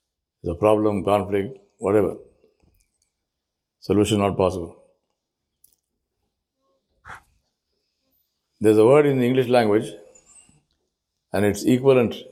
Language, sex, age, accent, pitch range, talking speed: English, male, 60-79, Indian, 75-110 Hz, 85 wpm